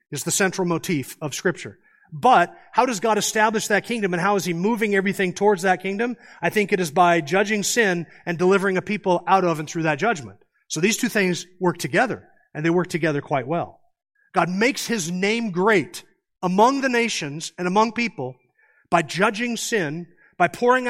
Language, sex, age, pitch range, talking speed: English, male, 40-59, 165-205 Hz, 190 wpm